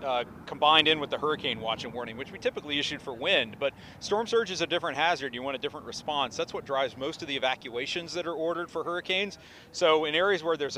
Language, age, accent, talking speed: English, 40-59, American, 245 wpm